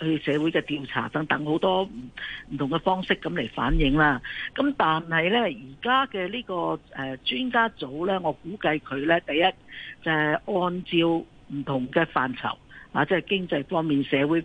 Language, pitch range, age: Chinese, 145-190 Hz, 50-69